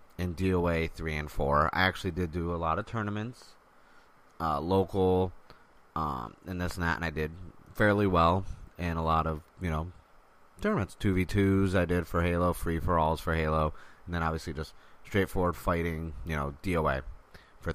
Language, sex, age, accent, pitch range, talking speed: English, male, 30-49, American, 80-95 Hz, 170 wpm